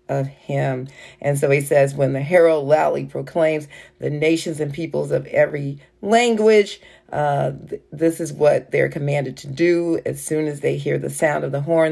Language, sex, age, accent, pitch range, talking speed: English, female, 40-59, American, 160-225 Hz, 185 wpm